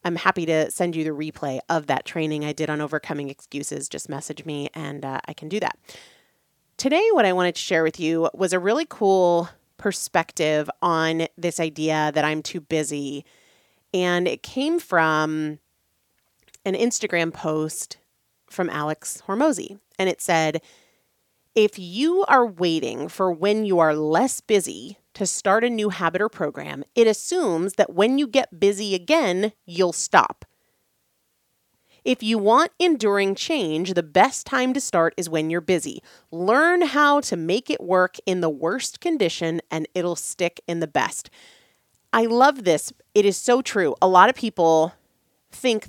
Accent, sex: American, female